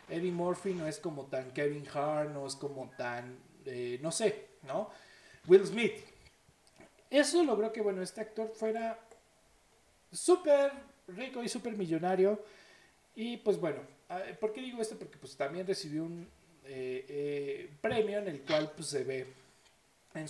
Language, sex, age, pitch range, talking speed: Spanish, male, 40-59, 140-215 Hz, 155 wpm